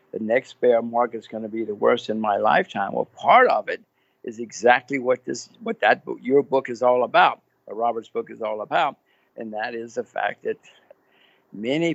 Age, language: 60-79, English